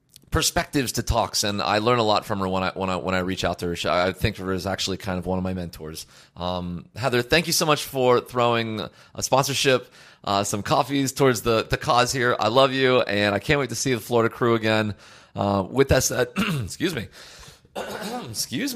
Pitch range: 105-150 Hz